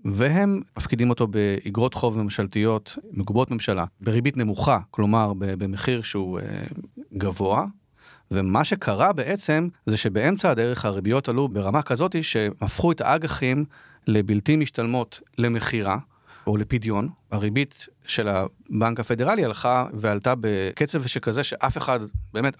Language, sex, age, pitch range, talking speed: Hebrew, male, 40-59, 105-140 Hz, 120 wpm